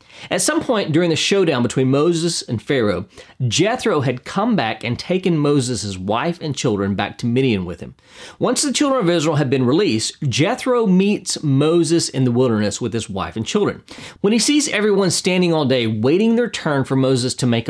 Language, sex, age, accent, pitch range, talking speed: English, male, 40-59, American, 115-170 Hz, 195 wpm